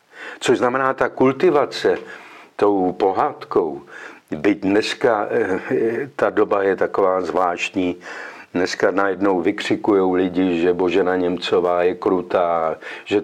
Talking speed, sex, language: 105 wpm, male, Czech